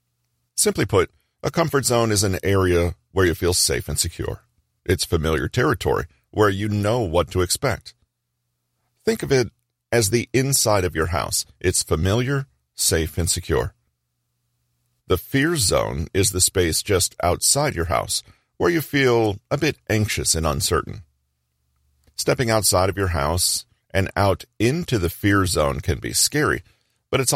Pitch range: 75-115 Hz